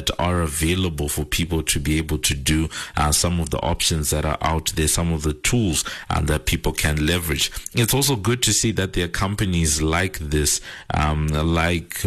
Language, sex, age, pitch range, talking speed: English, male, 50-69, 75-90 Hz, 200 wpm